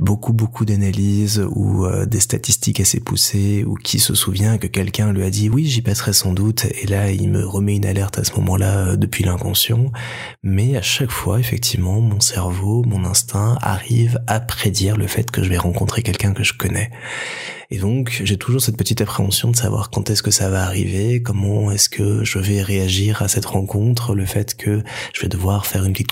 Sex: male